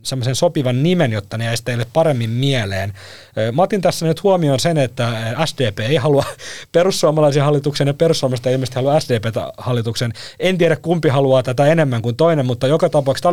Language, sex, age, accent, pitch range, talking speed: Finnish, male, 30-49, native, 115-155 Hz, 165 wpm